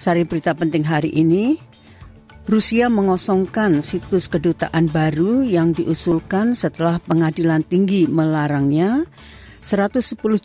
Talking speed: 100 wpm